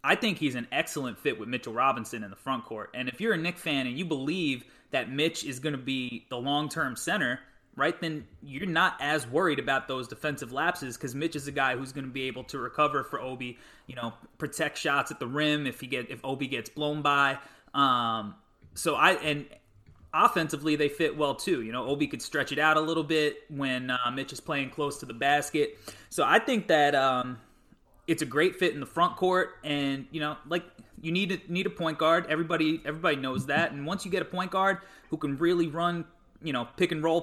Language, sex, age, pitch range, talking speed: English, male, 20-39, 135-170 Hz, 230 wpm